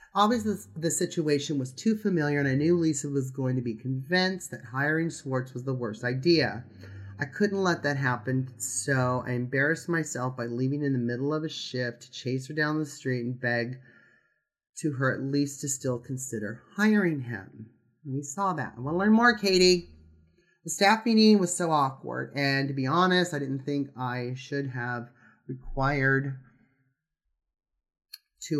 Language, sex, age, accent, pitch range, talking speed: English, male, 30-49, American, 125-170 Hz, 175 wpm